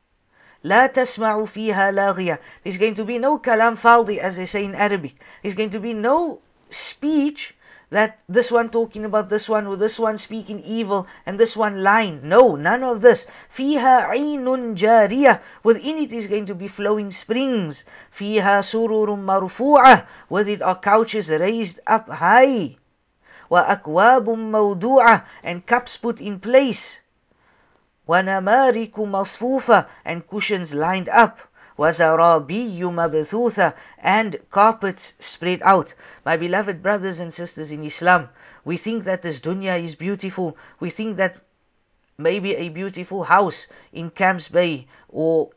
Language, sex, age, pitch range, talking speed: English, female, 50-69, 180-225 Hz, 140 wpm